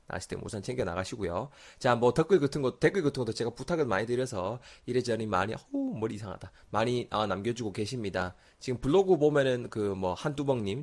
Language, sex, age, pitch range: Korean, male, 20-39, 100-140 Hz